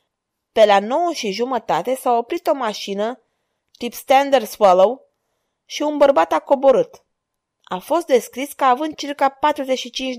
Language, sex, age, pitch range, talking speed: Romanian, female, 20-39, 220-290 Hz, 140 wpm